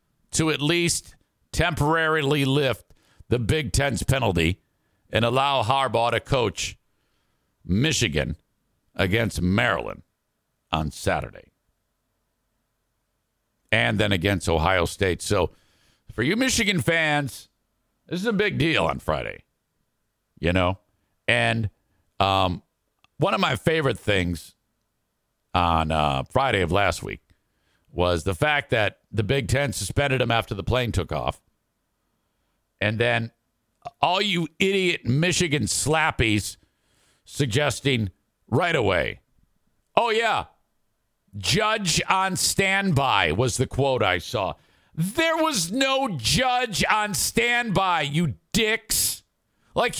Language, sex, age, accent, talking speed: English, male, 50-69, American, 115 wpm